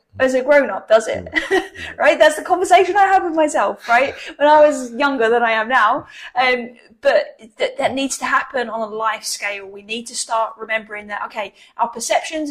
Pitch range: 220-295 Hz